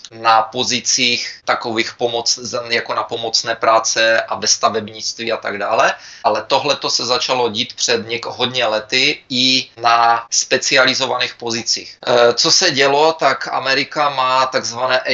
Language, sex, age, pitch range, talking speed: Czech, male, 20-39, 115-130 Hz, 135 wpm